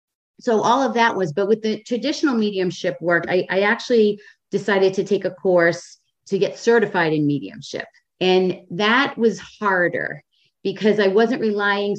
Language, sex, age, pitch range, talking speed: English, female, 30-49, 185-230 Hz, 160 wpm